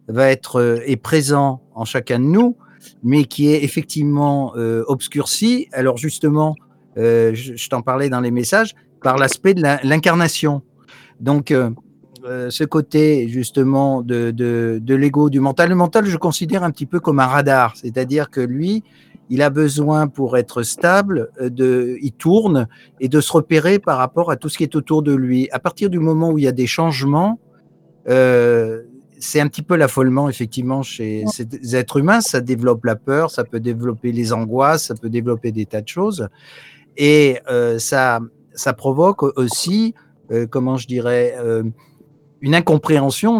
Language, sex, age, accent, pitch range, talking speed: French, male, 50-69, French, 125-155 Hz, 175 wpm